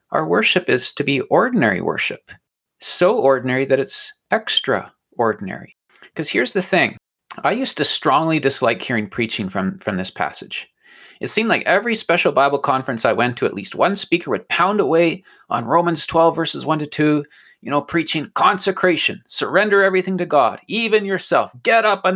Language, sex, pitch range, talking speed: English, male, 125-180 Hz, 175 wpm